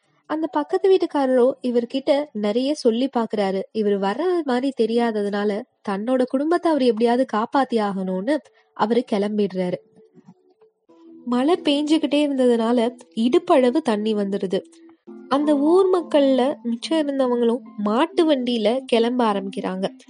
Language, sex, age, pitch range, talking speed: Tamil, female, 20-39, 225-300 Hz, 100 wpm